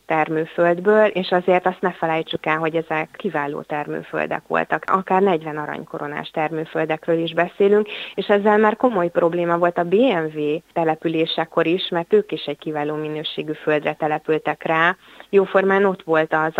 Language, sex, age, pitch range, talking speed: Hungarian, female, 30-49, 160-190 Hz, 150 wpm